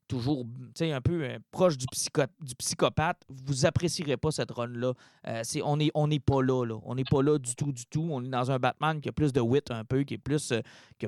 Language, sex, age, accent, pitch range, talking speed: French, male, 30-49, Canadian, 135-175 Hz, 250 wpm